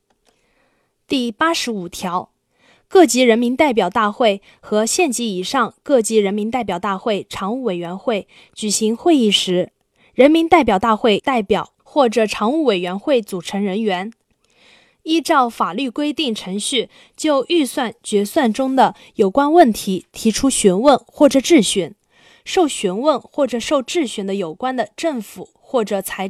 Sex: female